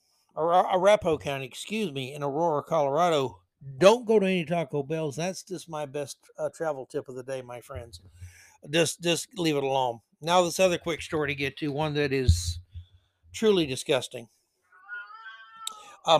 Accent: American